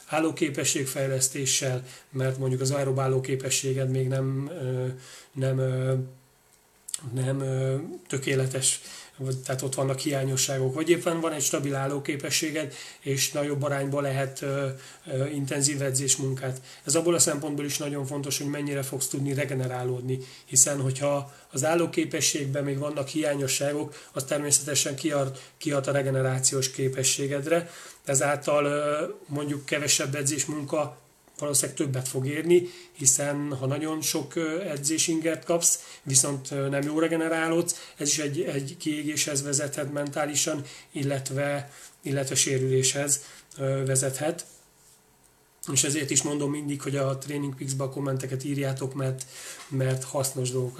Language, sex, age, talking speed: Hungarian, male, 30-49, 115 wpm